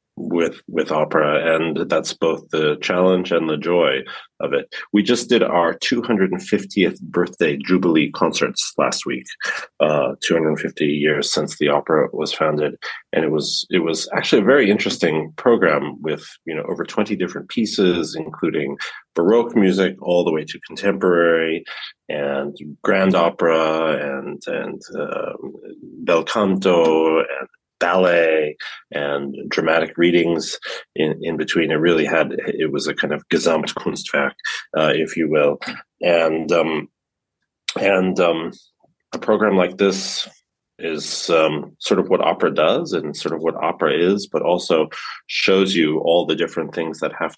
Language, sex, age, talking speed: German, male, 30-49, 145 wpm